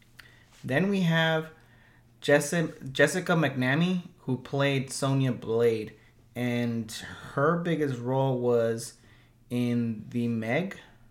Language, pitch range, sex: English, 115-140 Hz, male